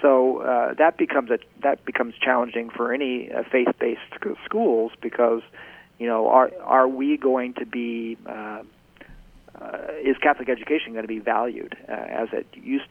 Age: 40-59